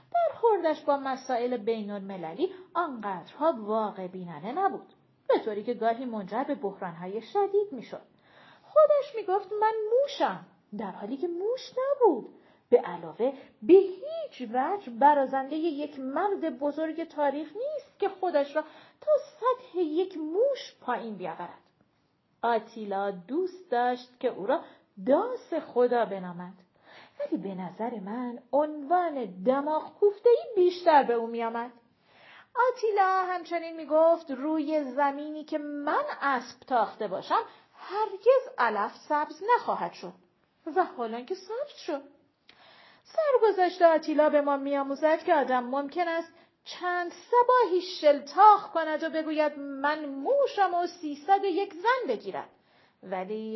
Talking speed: 125 wpm